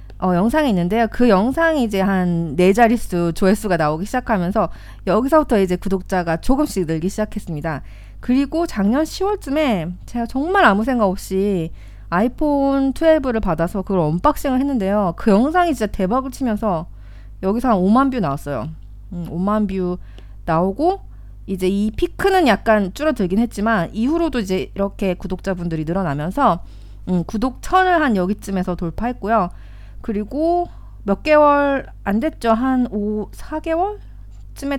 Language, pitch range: Korean, 180-270 Hz